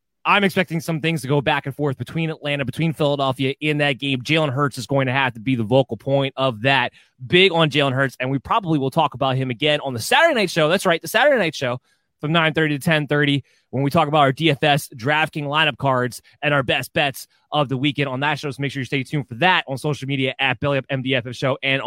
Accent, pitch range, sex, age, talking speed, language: American, 135-165 Hz, male, 20-39, 245 wpm, English